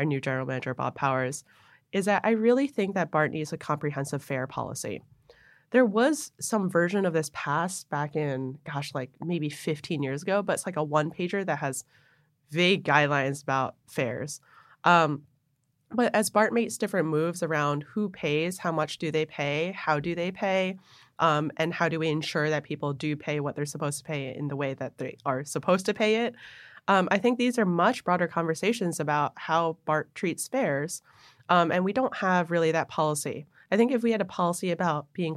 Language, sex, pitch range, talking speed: English, female, 145-180 Hz, 200 wpm